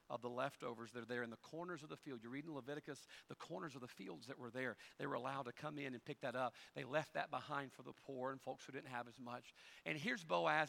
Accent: American